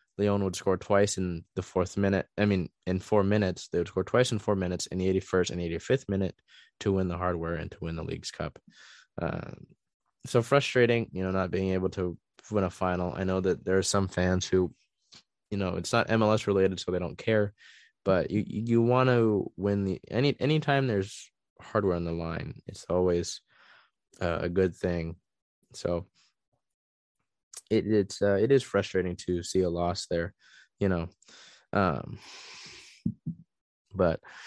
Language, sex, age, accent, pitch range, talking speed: English, male, 20-39, American, 90-105 Hz, 175 wpm